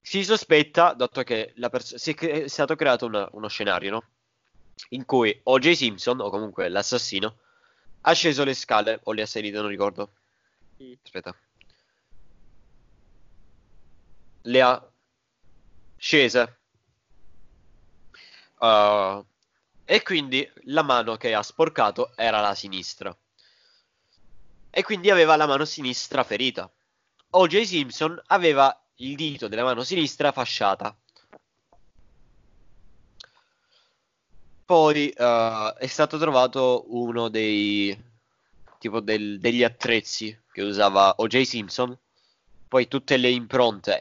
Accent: native